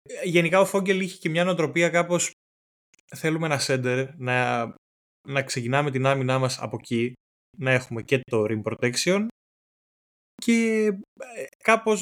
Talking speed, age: 135 wpm, 20-39